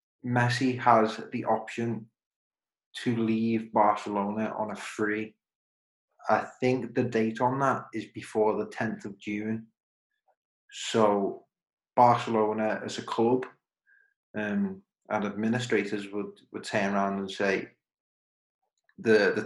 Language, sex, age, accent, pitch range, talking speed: English, male, 20-39, British, 105-120 Hz, 115 wpm